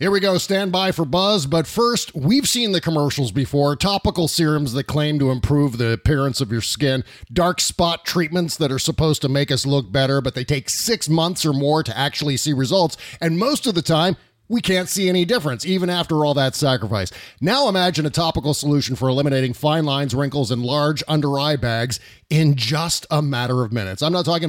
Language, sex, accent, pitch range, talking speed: English, male, American, 130-170 Hz, 210 wpm